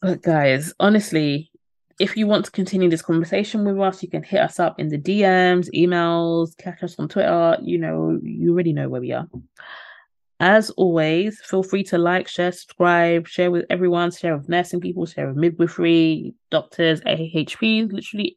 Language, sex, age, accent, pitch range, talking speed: English, female, 20-39, British, 165-200 Hz, 175 wpm